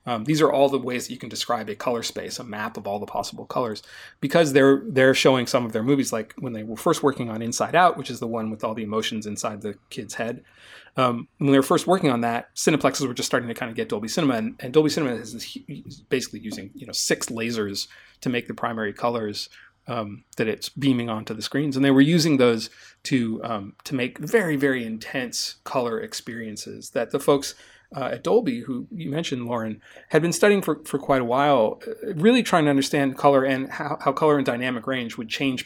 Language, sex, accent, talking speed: English, male, American, 235 wpm